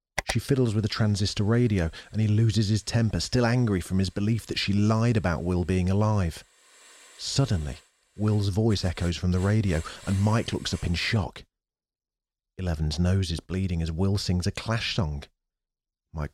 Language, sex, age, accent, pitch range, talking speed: English, male, 40-59, British, 85-110 Hz, 175 wpm